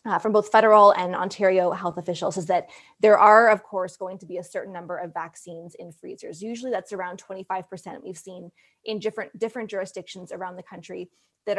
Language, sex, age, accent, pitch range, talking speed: English, female, 20-39, American, 185-215 Hz, 195 wpm